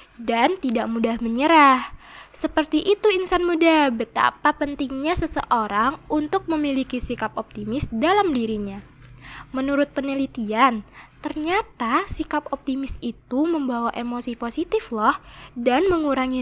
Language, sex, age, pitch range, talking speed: Indonesian, female, 10-29, 245-315 Hz, 105 wpm